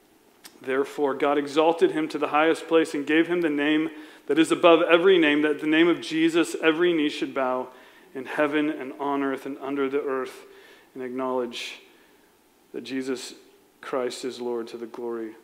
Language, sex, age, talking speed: English, male, 40-59, 180 wpm